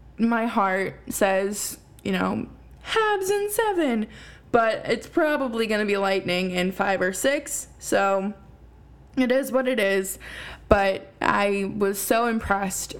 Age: 20-39